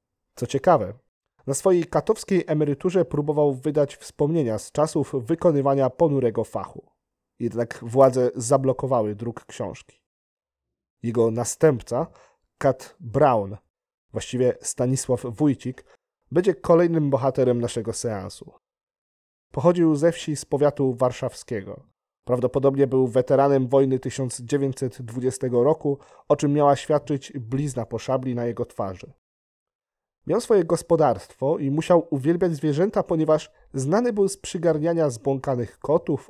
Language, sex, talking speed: Polish, male, 110 wpm